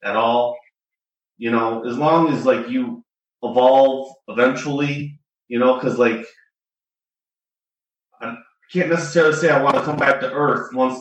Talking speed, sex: 145 wpm, male